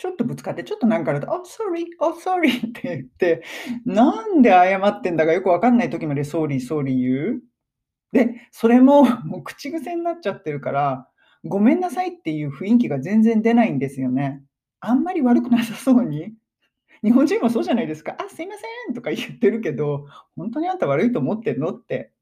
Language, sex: Japanese, male